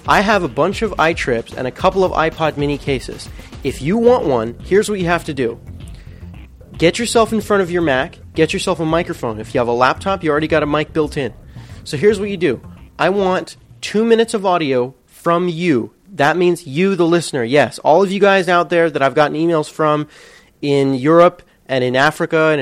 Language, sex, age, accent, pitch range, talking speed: English, male, 30-49, American, 135-175 Hz, 220 wpm